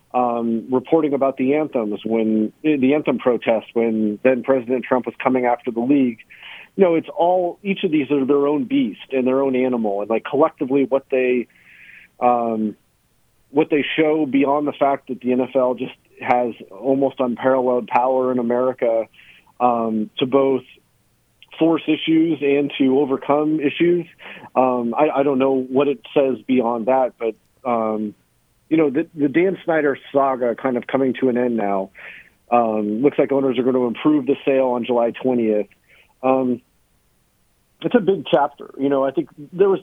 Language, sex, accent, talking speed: English, male, American, 175 wpm